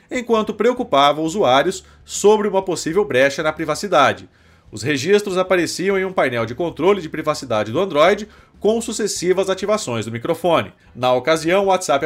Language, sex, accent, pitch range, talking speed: Portuguese, male, Brazilian, 145-205 Hz, 150 wpm